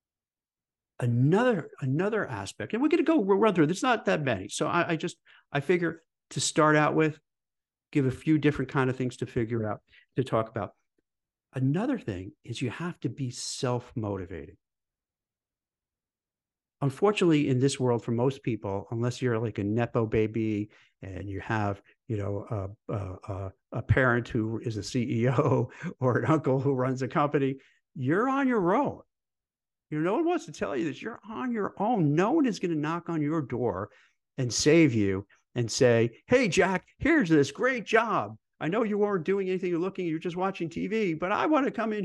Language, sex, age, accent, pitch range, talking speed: English, male, 50-69, American, 115-170 Hz, 190 wpm